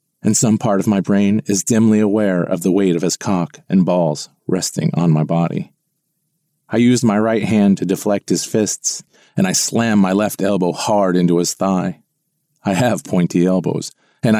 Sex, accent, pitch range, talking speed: male, American, 90-115 Hz, 190 wpm